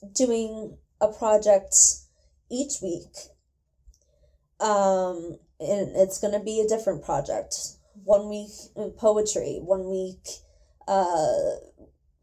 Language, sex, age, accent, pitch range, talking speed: English, female, 20-39, American, 180-215 Hz, 100 wpm